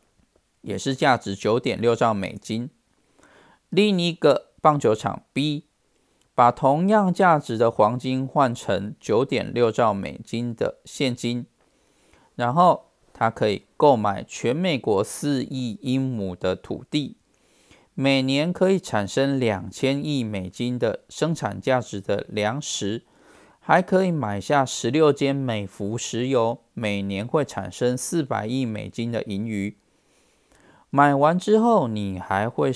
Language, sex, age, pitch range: Chinese, male, 20-39, 105-140 Hz